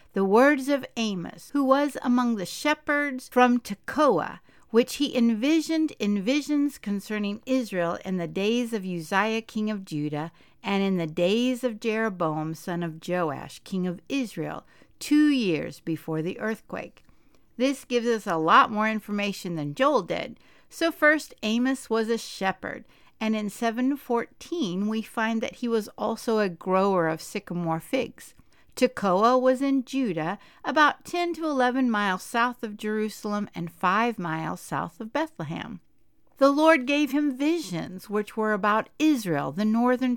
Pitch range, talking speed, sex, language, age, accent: 190-255 Hz, 150 wpm, female, English, 60-79, American